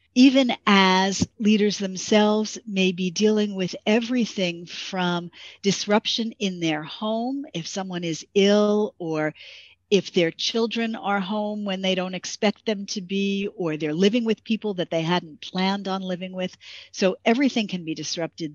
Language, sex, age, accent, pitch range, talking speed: English, female, 50-69, American, 175-220 Hz, 155 wpm